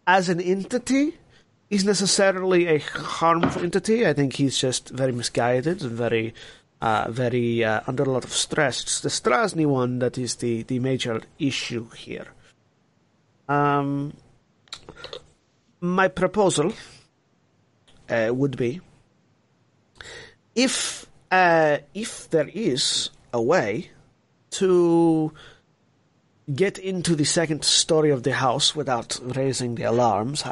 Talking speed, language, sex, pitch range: 120 wpm, English, male, 125-170 Hz